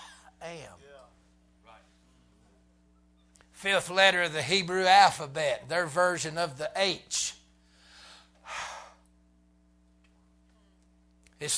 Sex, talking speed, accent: male, 65 wpm, American